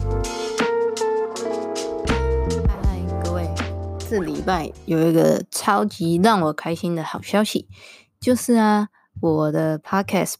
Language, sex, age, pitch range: Chinese, female, 20-39, 160-195 Hz